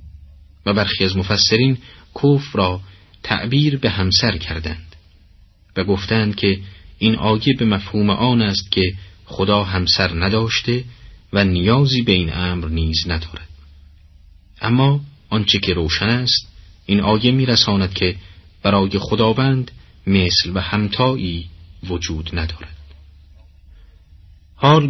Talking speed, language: 115 wpm, Persian